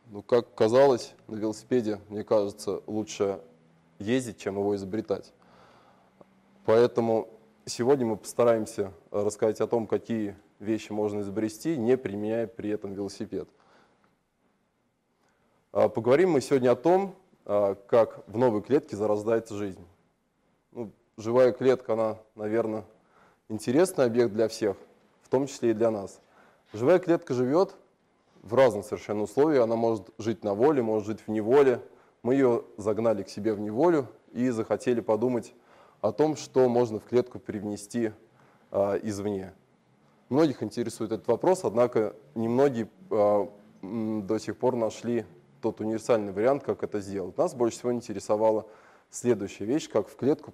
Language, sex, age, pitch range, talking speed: Russian, male, 20-39, 105-120 Hz, 140 wpm